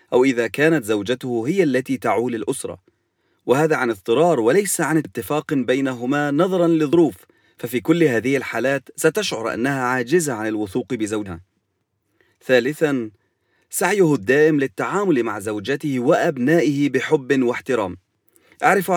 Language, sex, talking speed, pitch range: English, male, 115 wpm, 120-155 Hz